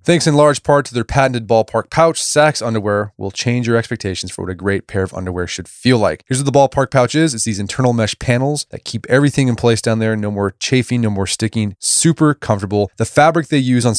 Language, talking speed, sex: English, 240 wpm, male